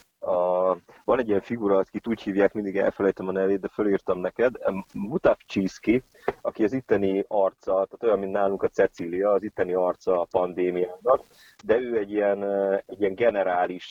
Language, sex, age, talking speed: Hungarian, male, 30-49, 165 wpm